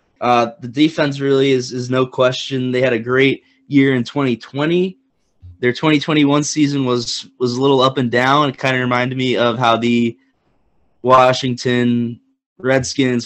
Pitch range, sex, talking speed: 120-155 Hz, male, 160 wpm